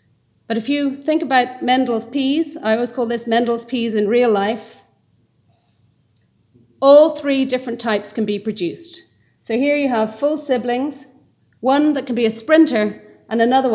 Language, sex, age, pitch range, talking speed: English, female, 40-59, 200-250 Hz, 160 wpm